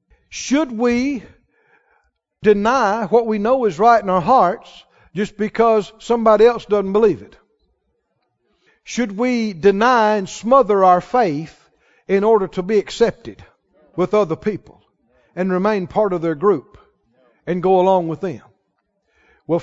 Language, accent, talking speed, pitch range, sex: English, American, 140 wpm, 180-230 Hz, male